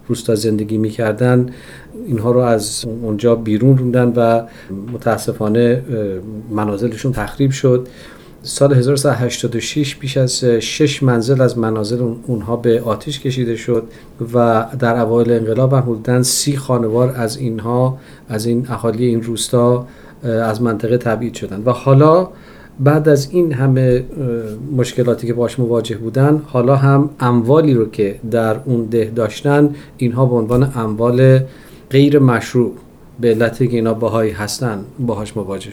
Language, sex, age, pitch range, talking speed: Persian, male, 40-59, 115-130 Hz, 135 wpm